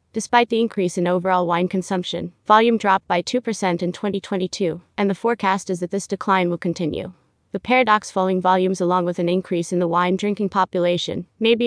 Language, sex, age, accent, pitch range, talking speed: English, female, 20-39, American, 180-210 Hz, 190 wpm